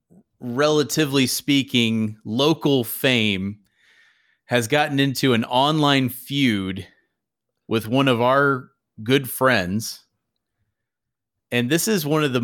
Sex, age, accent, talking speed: male, 30-49, American, 105 wpm